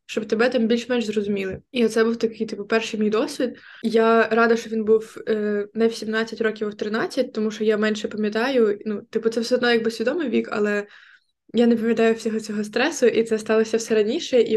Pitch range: 210-230 Hz